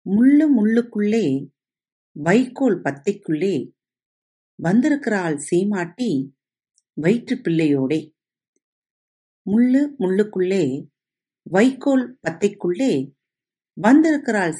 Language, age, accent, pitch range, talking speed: Tamil, 50-69, native, 155-235 Hz, 50 wpm